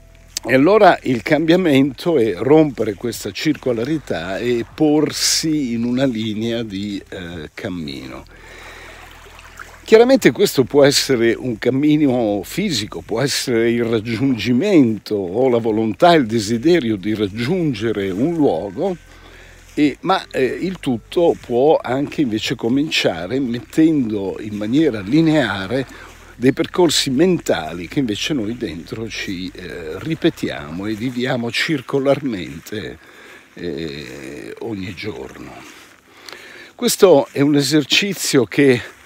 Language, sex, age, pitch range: Italian, male, 60-79, 105-145 Hz